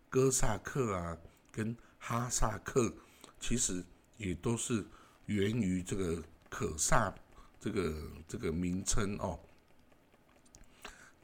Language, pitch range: Chinese, 85-115 Hz